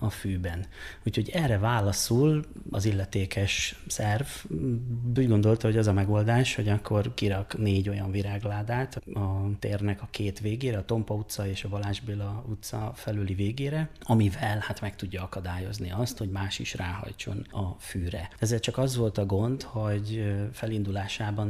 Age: 30-49